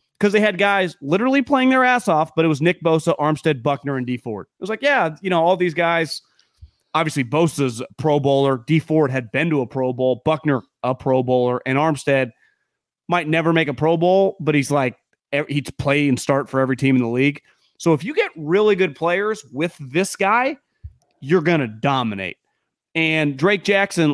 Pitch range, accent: 135-185 Hz, American